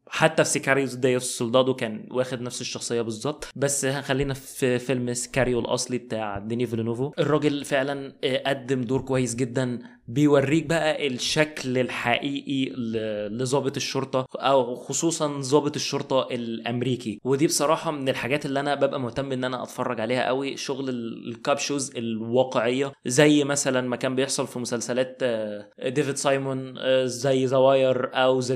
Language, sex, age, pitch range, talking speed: Arabic, male, 20-39, 120-140 Hz, 135 wpm